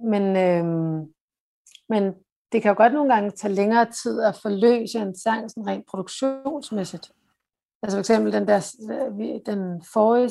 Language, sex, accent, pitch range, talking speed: Danish, female, native, 185-220 Hz, 150 wpm